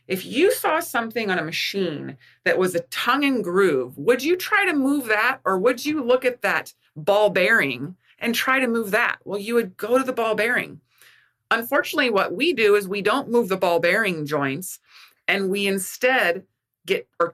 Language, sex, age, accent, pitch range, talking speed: English, female, 30-49, American, 170-230 Hz, 195 wpm